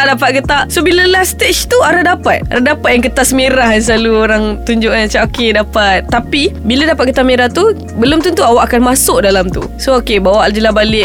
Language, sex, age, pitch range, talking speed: Malay, female, 20-39, 210-255 Hz, 225 wpm